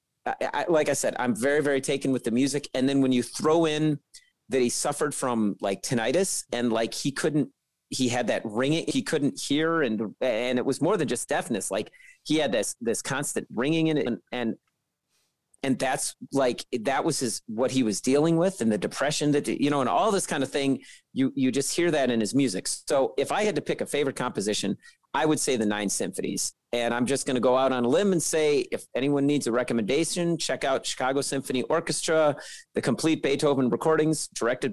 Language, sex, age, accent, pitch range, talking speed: English, male, 40-59, American, 125-155 Hz, 215 wpm